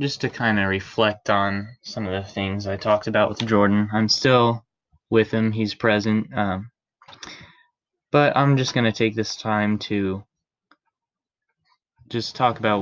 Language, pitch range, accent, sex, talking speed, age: English, 110-130 Hz, American, male, 160 wpm, 10-29